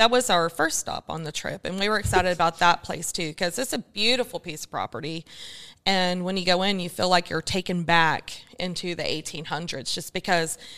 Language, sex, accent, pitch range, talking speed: English, female, American, 170-200 Hz, 215 wpm